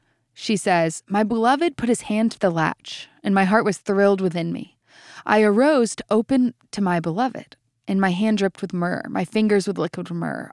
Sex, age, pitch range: female, 20-39, 165-220 Hz